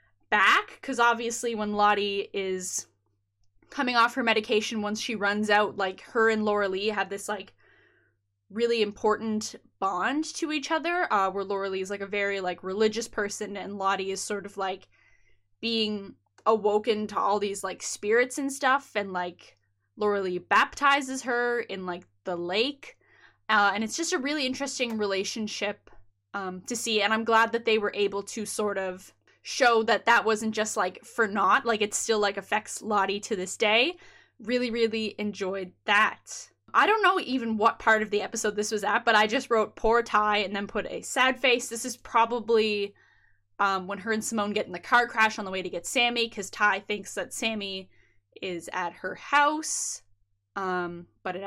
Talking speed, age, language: 190 wpm, 10-29, English